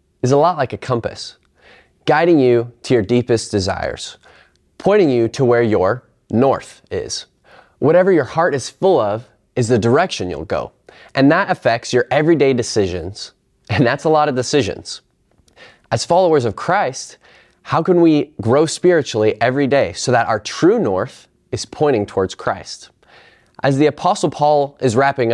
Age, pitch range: 20-39, 115-150 Hz